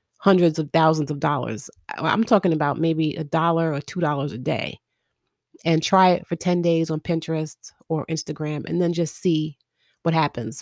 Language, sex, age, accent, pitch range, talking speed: English, female, 30-49, American, 155-185 Hz, 175 wpm